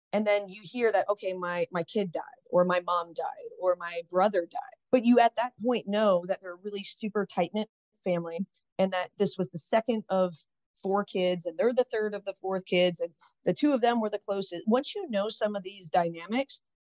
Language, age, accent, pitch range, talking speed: English, 30-49, American, 185-250 Hz, 230 wpm